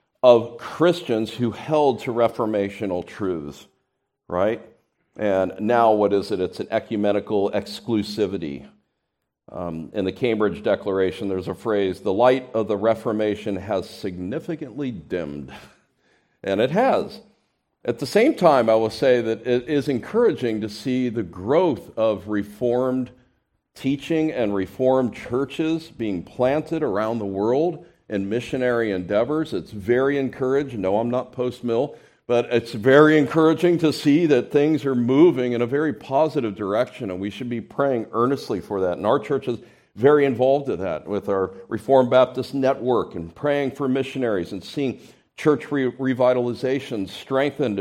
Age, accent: 50-69, American